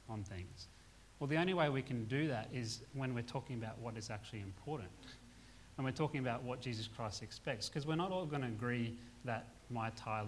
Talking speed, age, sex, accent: 215 wpm, 30-49, male, Australian